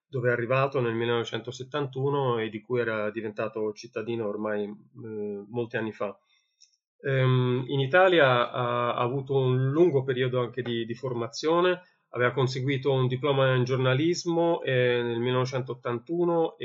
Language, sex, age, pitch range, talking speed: Persian, male, 30-49, 120-140 Hz, 140 wpm